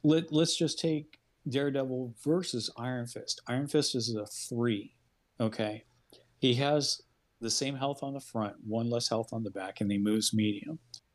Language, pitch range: English, 115-140 Hz